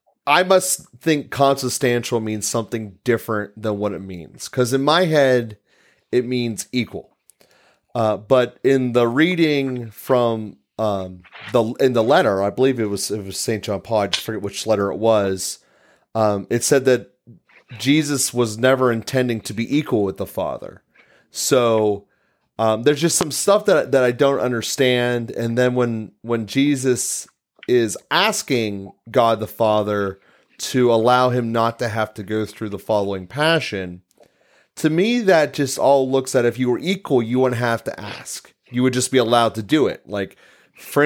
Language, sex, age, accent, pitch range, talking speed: English, male, 30-49, American, 110-130 Hz, 170 wpm